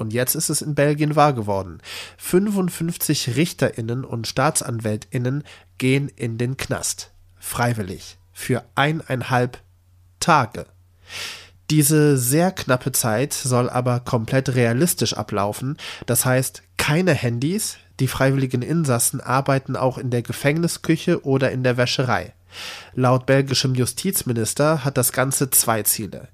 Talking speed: 120 wpm